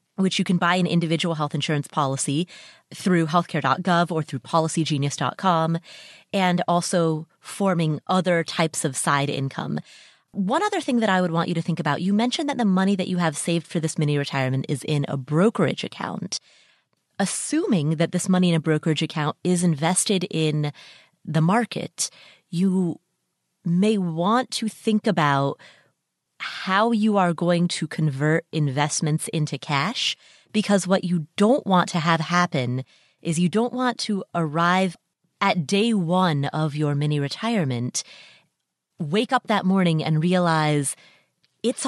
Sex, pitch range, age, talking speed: female, 155-190 Hz, 30-49, 150 wpm